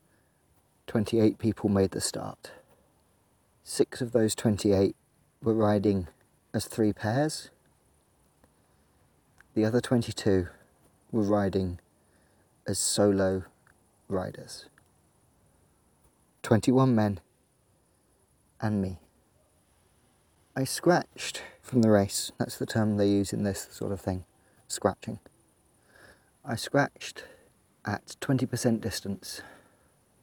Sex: male